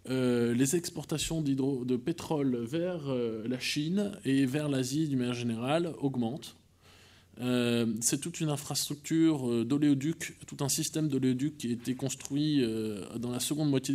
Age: 20-39